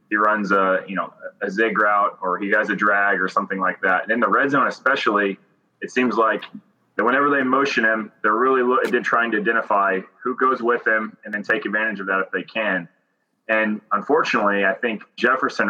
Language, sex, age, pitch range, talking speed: English, male, 30-49, 95-125 Hz, 205 wpm